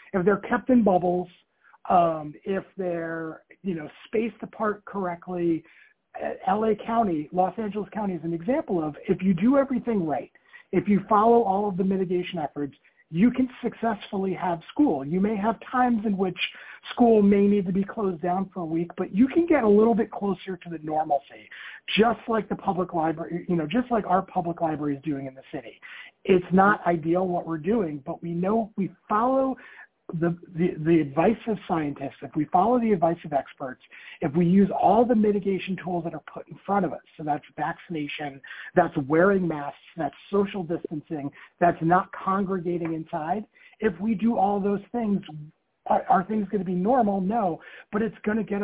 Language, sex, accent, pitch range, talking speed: English, male, American, 170-215 Hz, 190 wpm